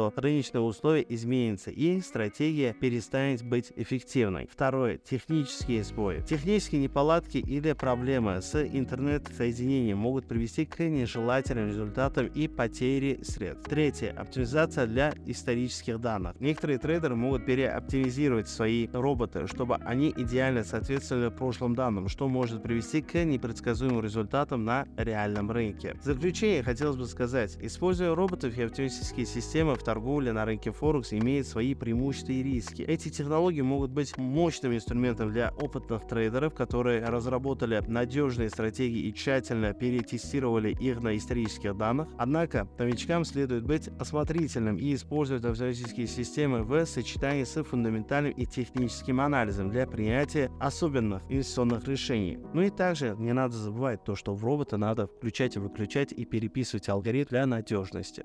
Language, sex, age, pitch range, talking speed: Russian, male, 20-39, 115-140 Hz, 135 wpm